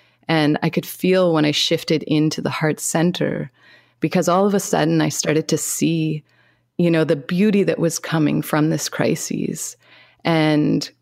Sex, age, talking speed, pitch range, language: female, 30-49, 170 wpm, 155-180 Hz, English